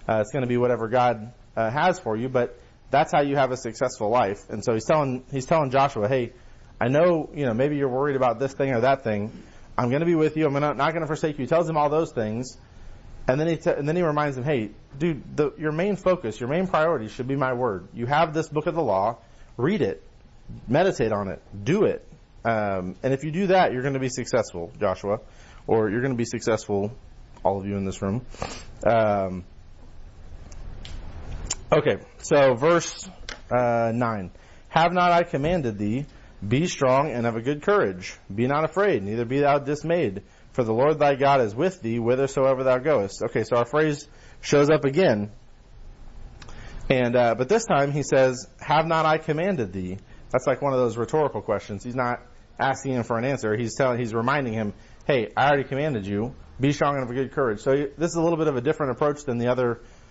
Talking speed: 215 wpm